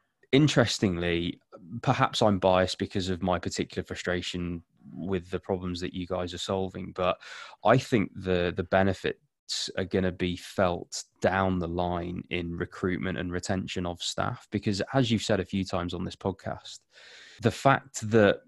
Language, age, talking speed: English, 20-39, 160 wpm